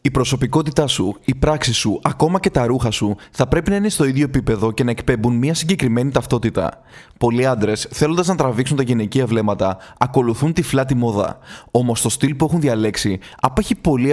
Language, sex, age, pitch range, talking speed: Greek, male, 20-39, 115-145 Hz, 190 wpm